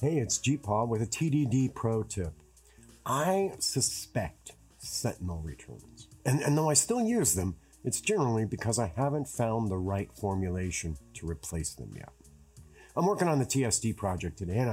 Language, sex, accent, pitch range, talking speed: English, male, American, 95-135 Hz, 165 wpm